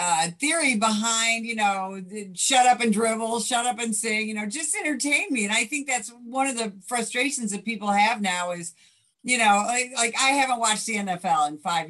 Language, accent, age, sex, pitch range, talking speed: English, American, 50-69, female, 200-255 Hz, 210 wpm